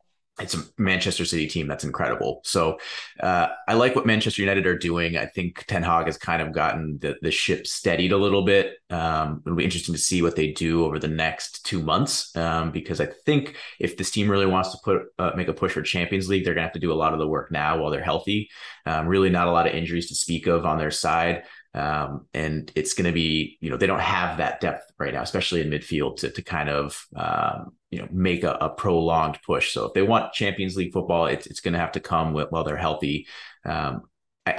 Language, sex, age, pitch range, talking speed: English, male, 30-49, 80-95 Hz, 245 wpm